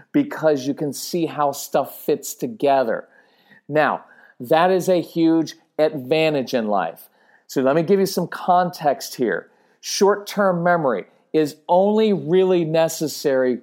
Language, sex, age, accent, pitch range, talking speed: English, male, 40-59, American, 140-180 Hz, 130 wpm